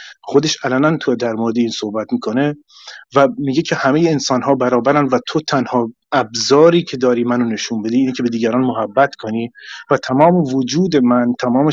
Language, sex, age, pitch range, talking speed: Persian, male, 30-49, 120-150 Hz, 175 wpm